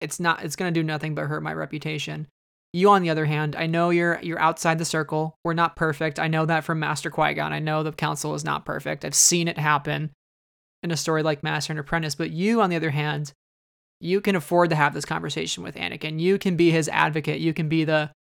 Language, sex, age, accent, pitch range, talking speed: English, male, 20-39, American, 155-175 Hz, 245 wpm